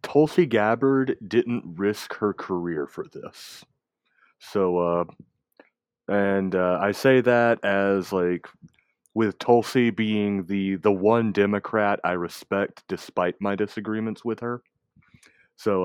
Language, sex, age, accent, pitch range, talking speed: English, male, 30-49, American, 95-120 Hz, 120 wpm